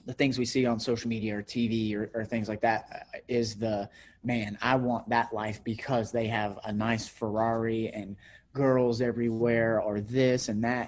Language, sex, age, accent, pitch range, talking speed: English, male, 30-49, American, 110-130 Hz, 190 wpm